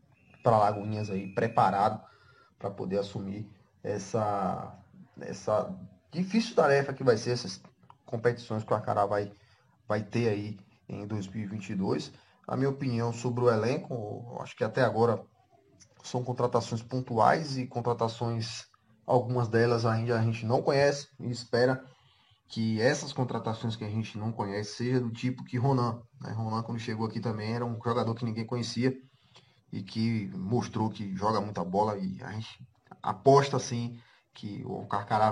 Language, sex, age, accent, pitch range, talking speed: Portuguese, male, 20-39, Brazilian, 105-120 Hz, 155 wpm